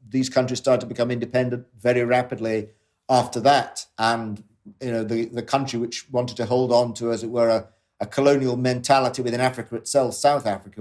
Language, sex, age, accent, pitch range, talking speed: English, male, 50-69, British, 110-140 Hz, 190 wpm